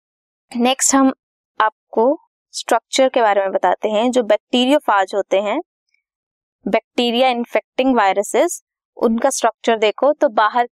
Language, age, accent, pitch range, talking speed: Hindi, 20-39, native, 210-270 Hz, 125 wpm